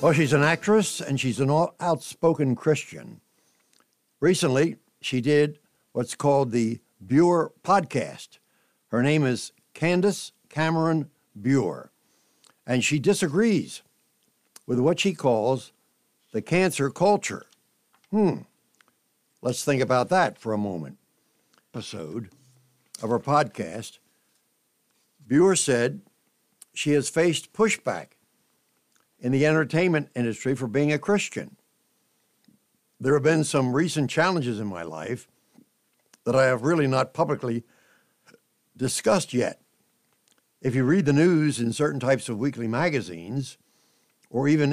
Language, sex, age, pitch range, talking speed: English, male, 60-79, 125-165 Hz, 120 wpm